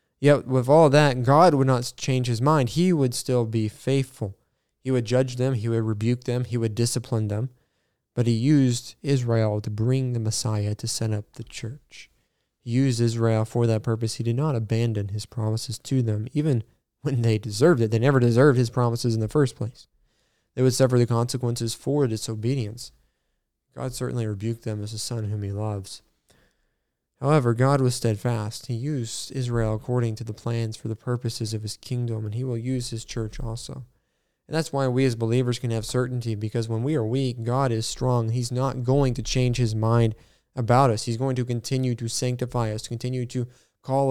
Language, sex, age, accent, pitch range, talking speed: English, male, 20-39, American, 115-130 Hz, 195 wpm